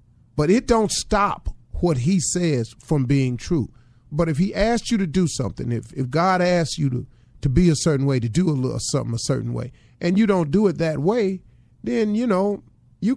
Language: English